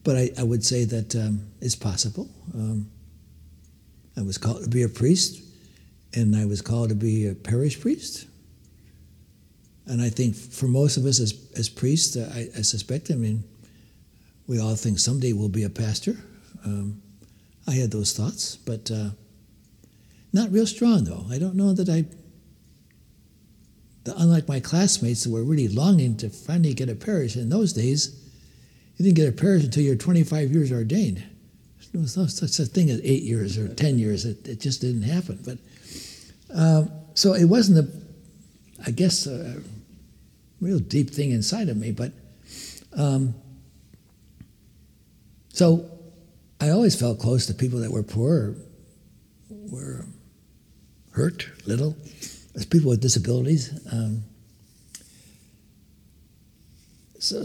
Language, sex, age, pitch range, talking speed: English, male, 60-79, 110-160 Hz, 150 wpm